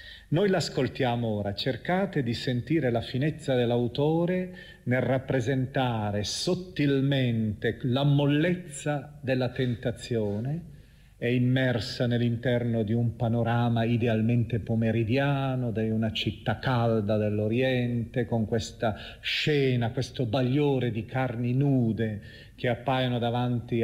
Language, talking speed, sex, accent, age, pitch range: Italian, 100 wpm, male, native, 40-59, 110-135 Hz